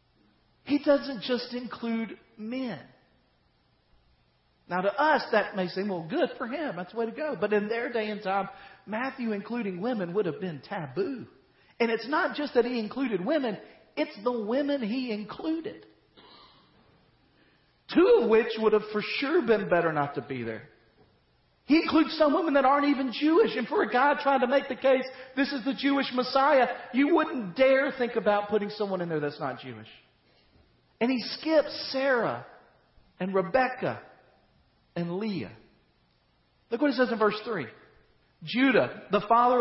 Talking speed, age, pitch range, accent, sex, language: 170 wpm, 40-59, 185-255 Hz, American, male, English